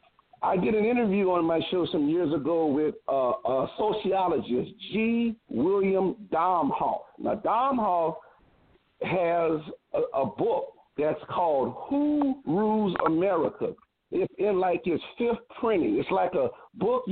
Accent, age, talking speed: American, 50-69, 135 wpm